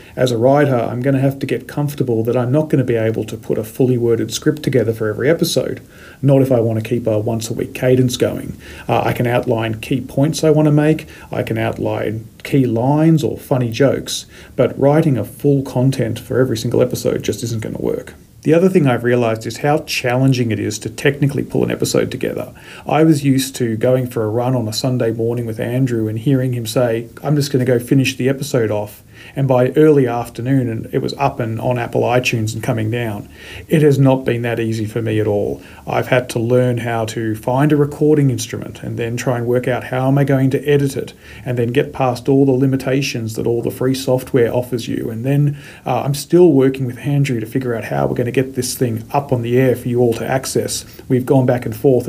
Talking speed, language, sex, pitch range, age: 240 wpm, English, male, 115-135 Hz, 40-59